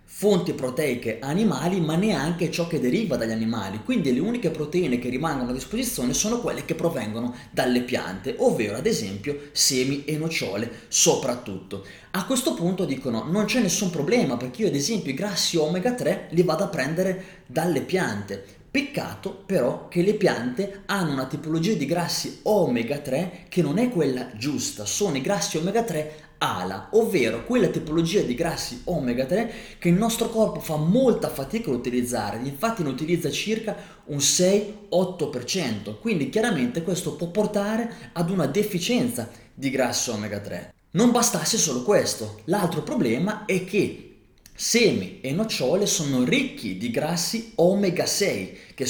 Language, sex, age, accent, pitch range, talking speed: Italian, male, 30-49, native, 125-195 Hz, 155 wpm